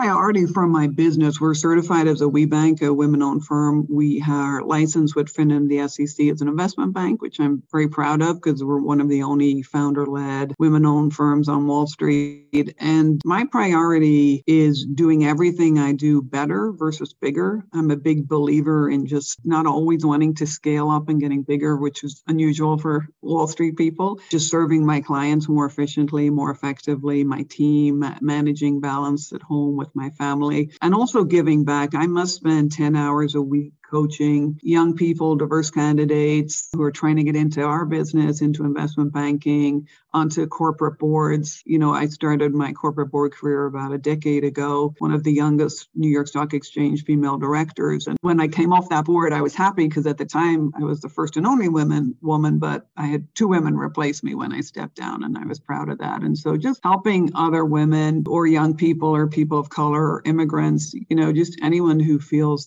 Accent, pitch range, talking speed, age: American, 145-160 Hz, 195 wpm, 50-69